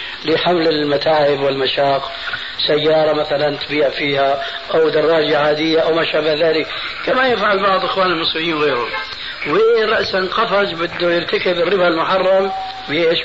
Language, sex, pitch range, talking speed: Arabic, male, 145-190 Hz, 120 wpm